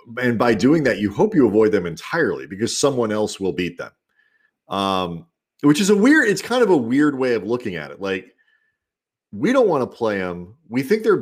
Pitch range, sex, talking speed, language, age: 95-140 Hz, male, 220 wpm, English, 40-59